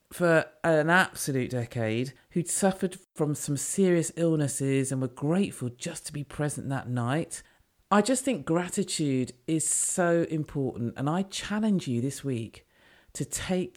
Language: English